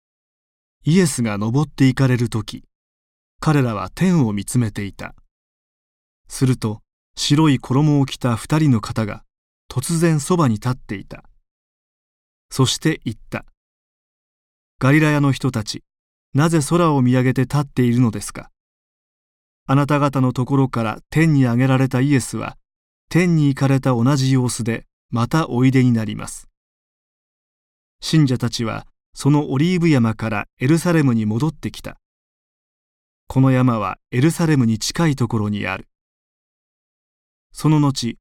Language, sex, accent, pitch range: Japanese, male, native, 110-145 Hz